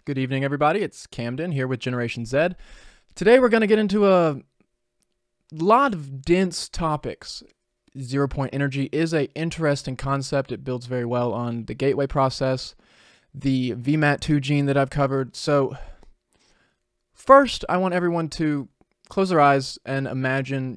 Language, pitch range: English, 125-155 Hz